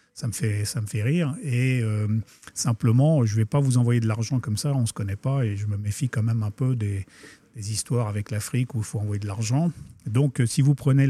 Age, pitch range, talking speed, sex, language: 50-69, 110-135 Hz, 265 wpm, male, French